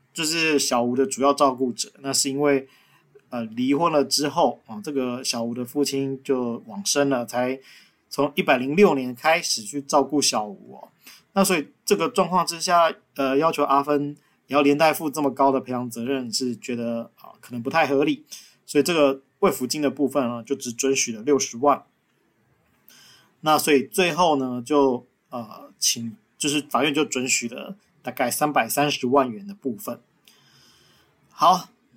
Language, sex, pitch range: Chinese, male, 130-155 Hz